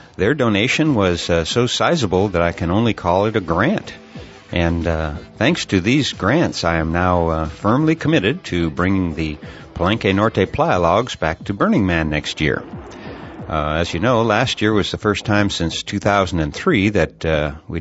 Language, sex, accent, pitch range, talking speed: English, male, American, 85-110 Hz, 180 wpm